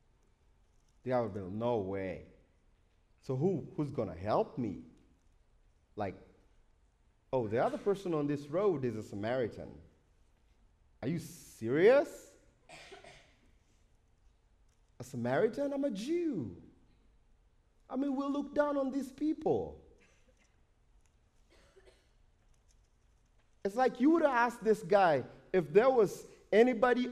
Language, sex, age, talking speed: English, male, 30-49, 115 wpm